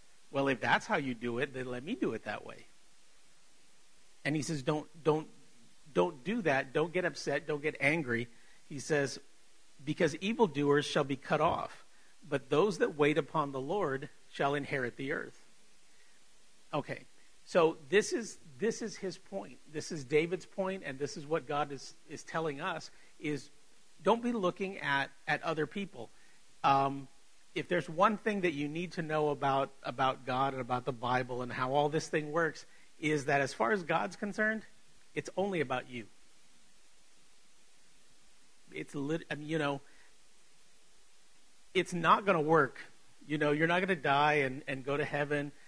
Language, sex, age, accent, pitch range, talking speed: English, male, 50-69, American, 140-175 Hz, 175 wpm